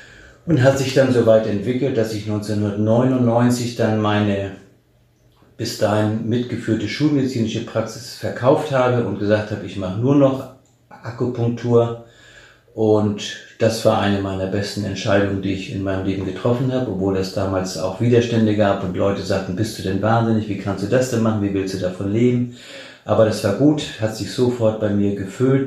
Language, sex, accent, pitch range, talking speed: German, male, German, 100-120 Hz, 175 wpm